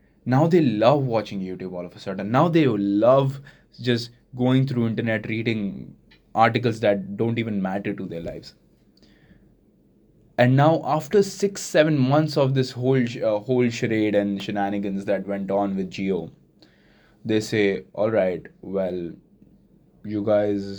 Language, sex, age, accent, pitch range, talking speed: English, male, 20-39, Indian, 100-135 Hz, 145 wpm